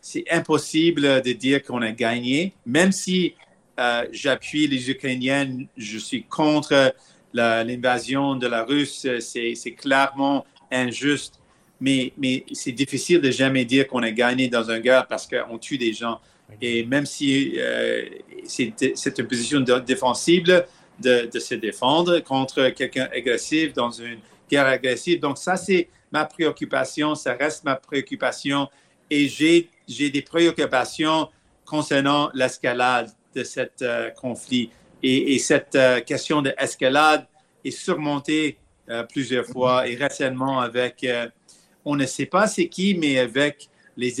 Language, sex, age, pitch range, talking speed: French, male, 50-69, 125-150 Hz, 150 wpm